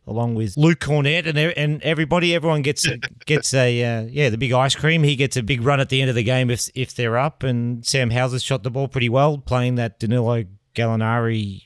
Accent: Australian